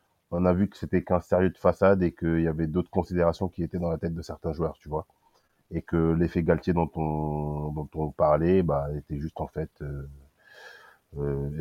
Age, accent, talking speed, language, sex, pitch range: 30-49, French, 210 wpm, French, male, 80-90 Hz